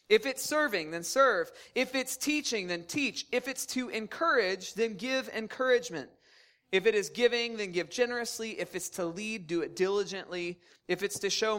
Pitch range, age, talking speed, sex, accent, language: 190-240 Hz, 20-39, 180 wpm, male, American, English